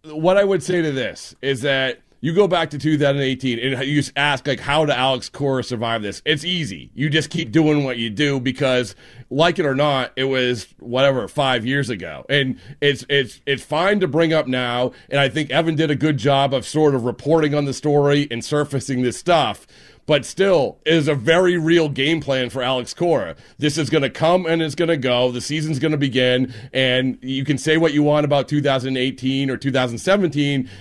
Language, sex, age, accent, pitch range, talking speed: English, male, 40-59, American, 130-165 Hz, 215 wpm